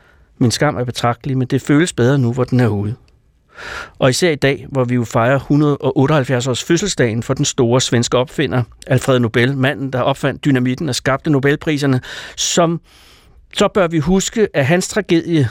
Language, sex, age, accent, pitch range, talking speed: Danish, male, 60-79, native, 120-155 Hz, 180 wpm